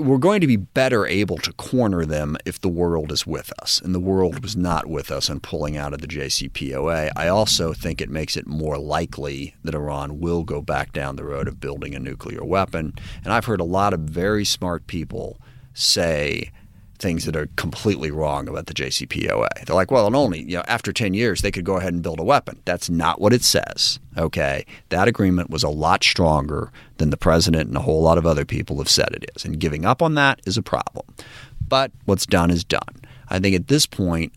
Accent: American